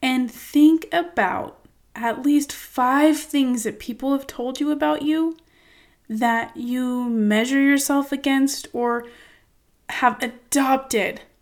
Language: English